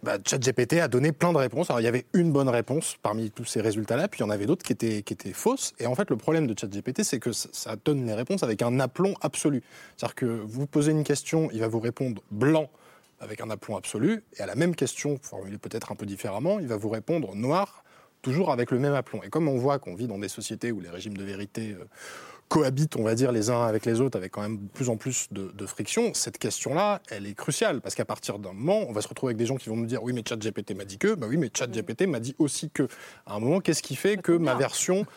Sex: male